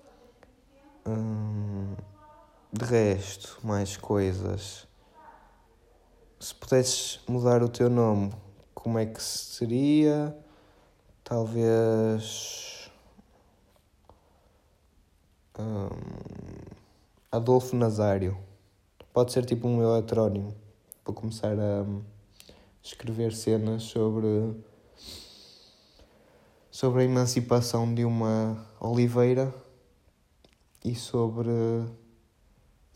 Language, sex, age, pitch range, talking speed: Portuguese, male, 20-39, 100-115 Hz, 70 wpm